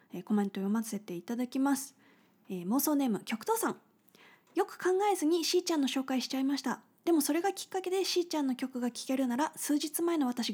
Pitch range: 225-305 Hz